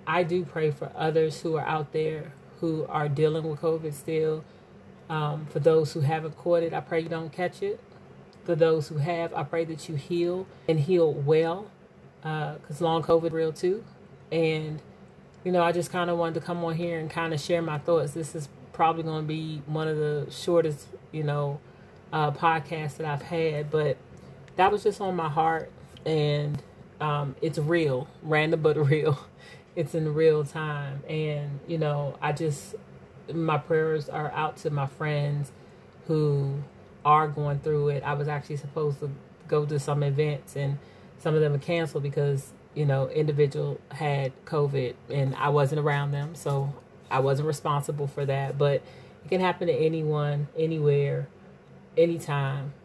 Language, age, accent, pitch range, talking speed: English, 30-49, American, 145-165 Hz, 180 wpm